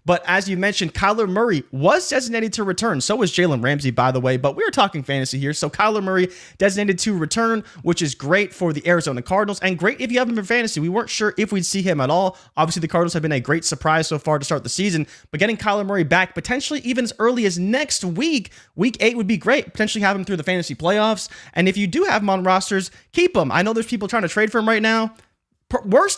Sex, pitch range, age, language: male, 155-210 Hz, 20-39, English